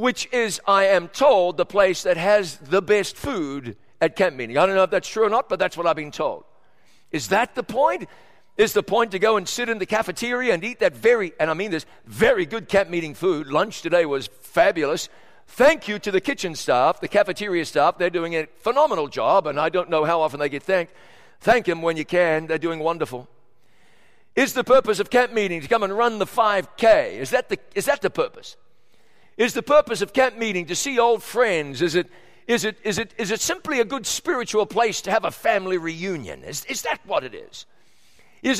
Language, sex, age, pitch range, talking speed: English, male, 60-79, 175-245 Hz, 220 wpm